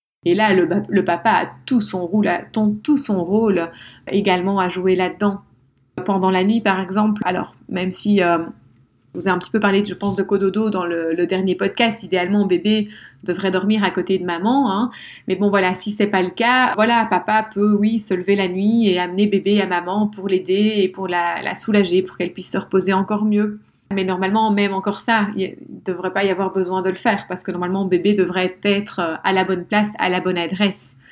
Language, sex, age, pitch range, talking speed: French, female, 30-49, 180-210 Hz, 230 wpm